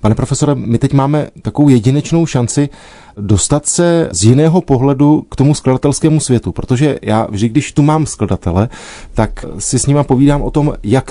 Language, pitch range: Czech, 110-150 Hz